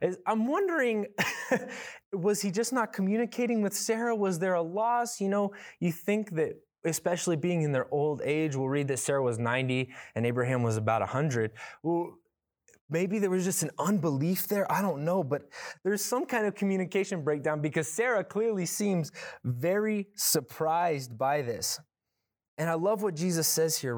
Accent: American